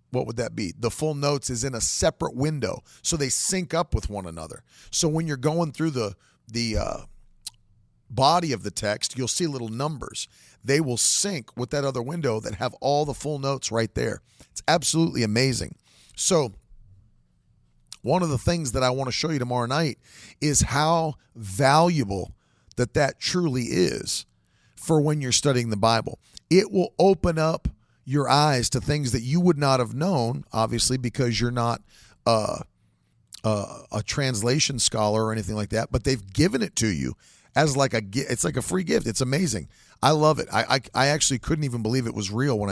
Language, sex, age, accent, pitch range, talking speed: English, male, 40-59, American, 110-145 Hz, 190 wpm